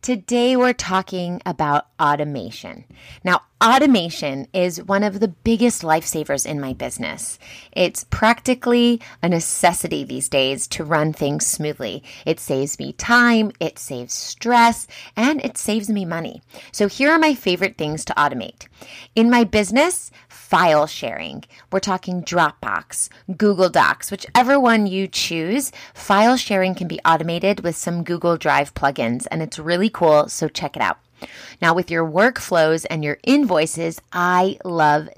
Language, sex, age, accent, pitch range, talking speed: English, female, 30-49, American, 160-215 Hz, 150 wpm